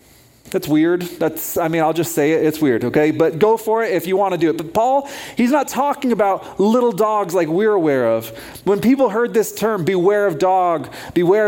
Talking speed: 225 wpm